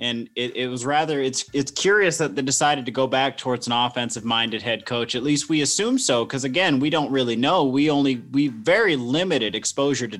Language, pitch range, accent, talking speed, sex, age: English, 120-145 Hz, American, 225 wpm, male, 30-49